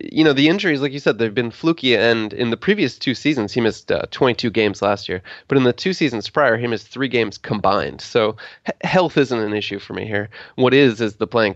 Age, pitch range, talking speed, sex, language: 20-39, 105-130 Hz, 250 wpm, male, English